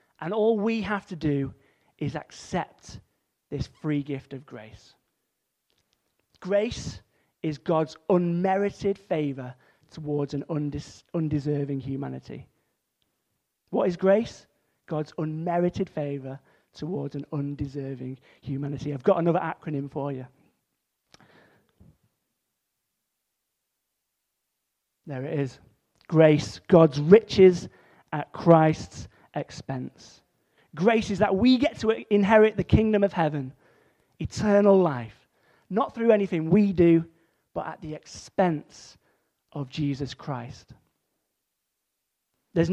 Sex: male